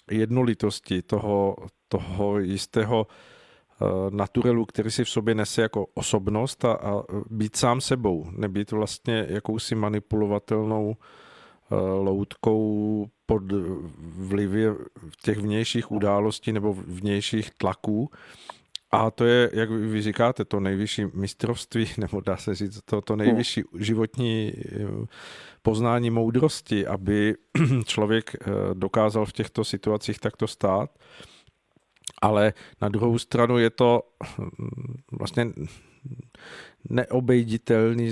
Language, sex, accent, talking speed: Czech, male, native, 100 wpm